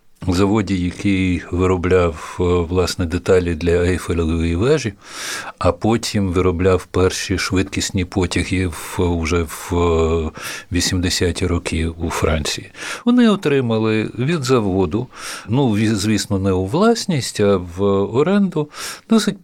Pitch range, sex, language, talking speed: 95-125 Hz, male, Ukrainian, 105 wpm